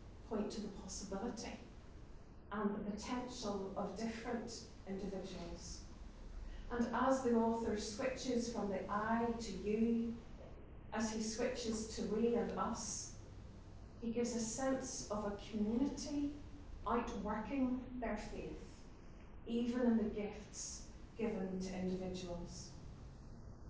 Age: 40-59